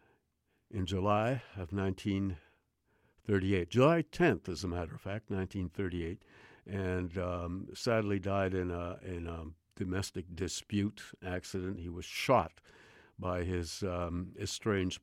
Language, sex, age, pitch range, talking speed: English, male, 60-79, 90-110 Hz, 110 wpm